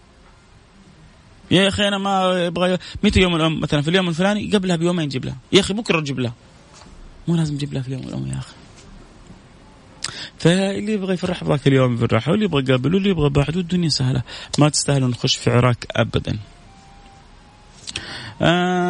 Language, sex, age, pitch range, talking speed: Arabic, male, 30-49, 100-145 Hz, 180 wpm